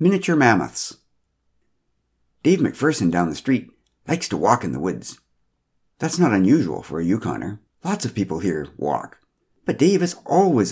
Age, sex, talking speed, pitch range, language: 60-79, male, 155 wpm, 85-120 Hz, English